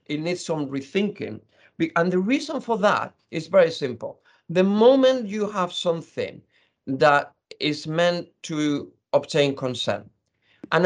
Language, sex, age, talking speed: English, male, 50-69, 135 wpm